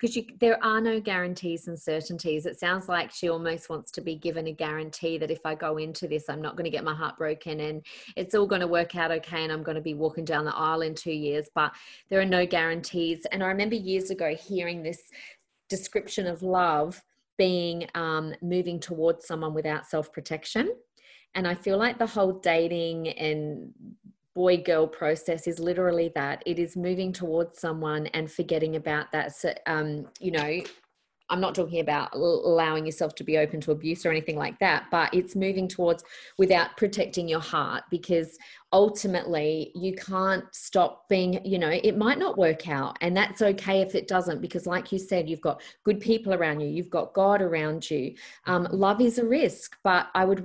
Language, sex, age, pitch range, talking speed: English, female, 30-49, 160-190 Hz, 200 wpm